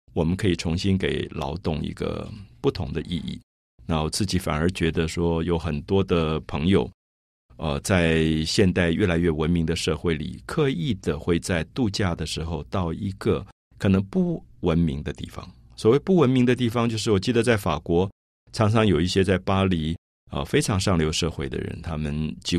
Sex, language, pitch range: male, Chinese, 85-120 Hz